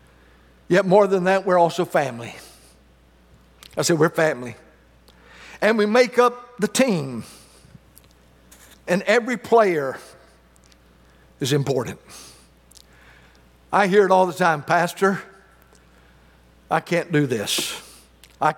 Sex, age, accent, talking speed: male, 60-79, American, 110 wpm